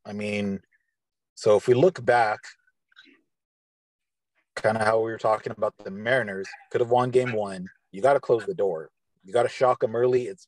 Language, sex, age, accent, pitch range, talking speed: English, male, 30-49, American, 105-140 Hz, 195 wpm